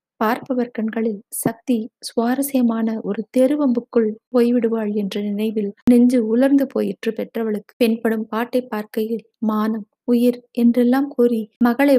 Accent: native